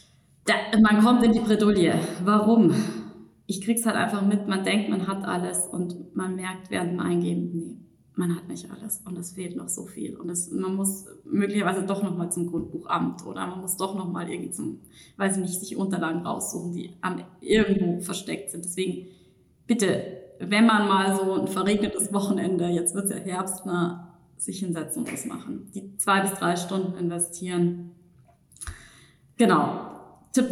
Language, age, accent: German, 20-39, German